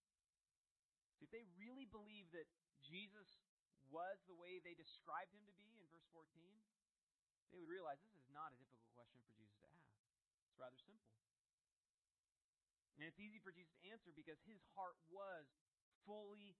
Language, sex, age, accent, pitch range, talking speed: English, male, 30-49, American, 120-185 Hz, 165 wpm